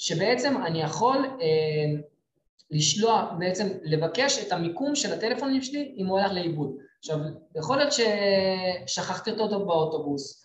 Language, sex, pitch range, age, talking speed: Hebrew, male, 160-245 Hz, 20-39, 125 wpm